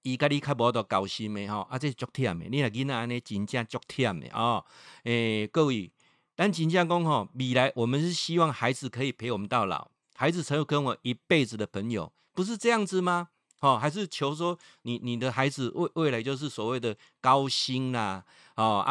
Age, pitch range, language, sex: 50-69, 115-150 Hz, Chinese, male